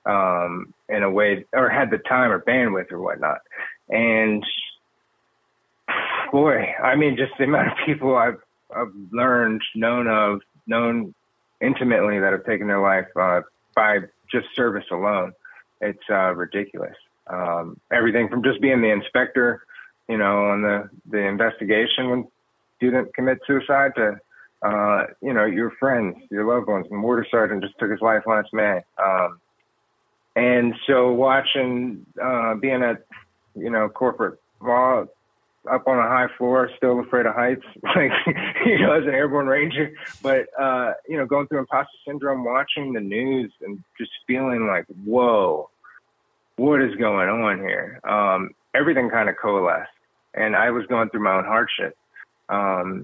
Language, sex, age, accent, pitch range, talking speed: English, male, 30-49, American, 105-130 Hz, 155 wpm